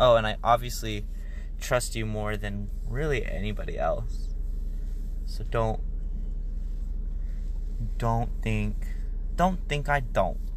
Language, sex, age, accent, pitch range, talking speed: English, male, 20-39, American, 80-125 Hz, 110 wpm